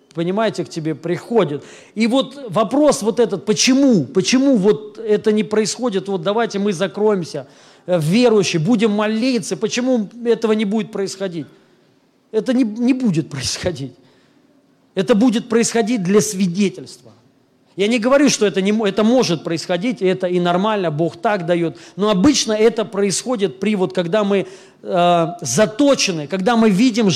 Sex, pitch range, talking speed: male, 180-235 Hz, 145 wpm